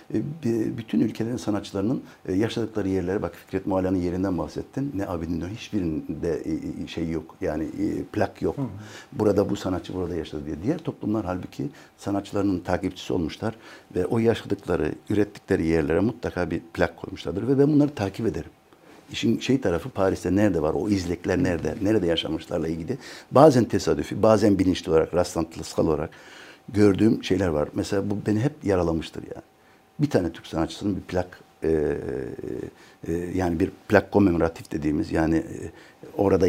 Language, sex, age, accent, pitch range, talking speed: Turkish, male, 60-79, native, 85-105 Hz, 145 wpm